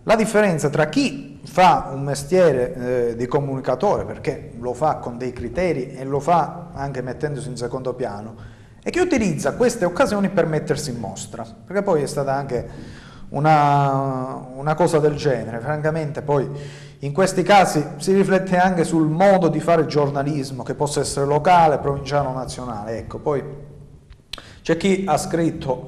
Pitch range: 125-160 Hz